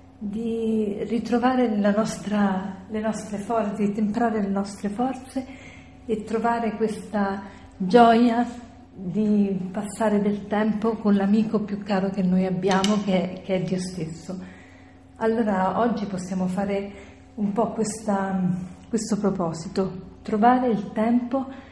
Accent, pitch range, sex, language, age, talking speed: native, 195-225 Hz, female, Italian, 40-59, 120 wpm